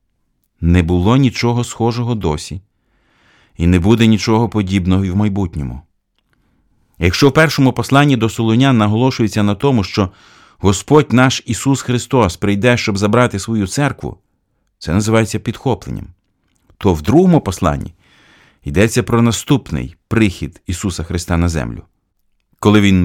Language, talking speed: Ukrainian, 130 wpm